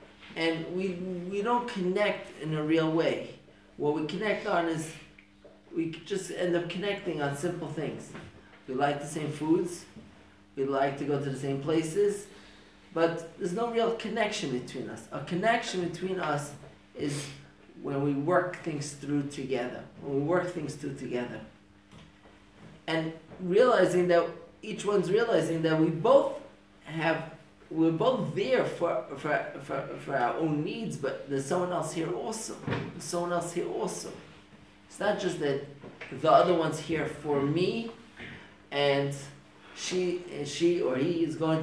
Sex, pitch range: male, 145-180 Hz